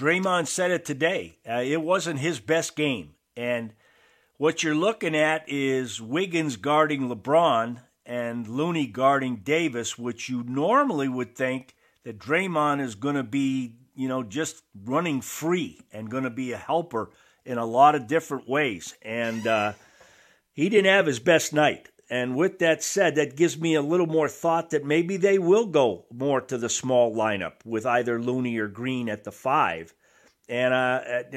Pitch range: 120-165 Hz